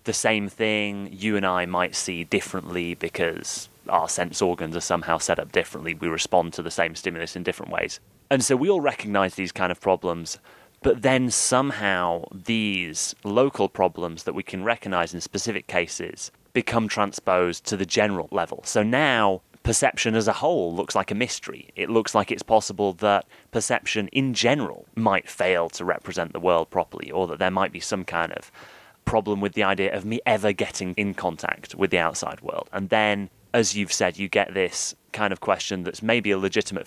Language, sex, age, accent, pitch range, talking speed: English, male, 30-49, British, 90-110 Hz, 190 wpm